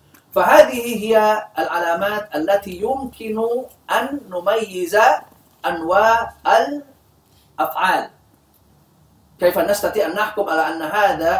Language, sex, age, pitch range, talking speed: Indonesian, male, 40-59, 170-235 Hz, 90 wpm